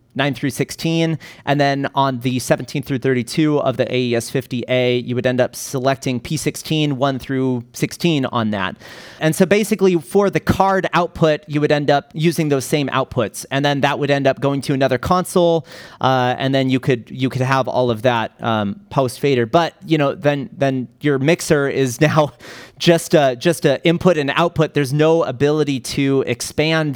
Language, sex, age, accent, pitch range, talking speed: English, male, 30-49, American, 125-155 Hz, 190 wpm